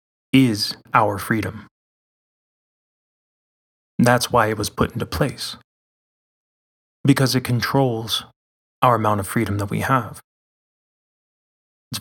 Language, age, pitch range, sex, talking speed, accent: English, 20-39, 105-130 Hz, male, 105 wpm, American